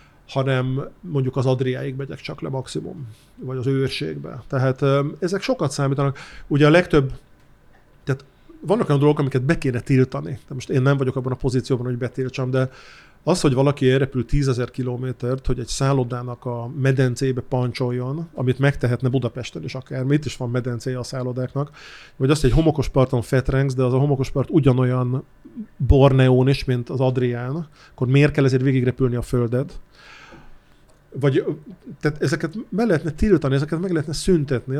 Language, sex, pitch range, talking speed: Hungarian, male, 130-150 Hz, 160 wpm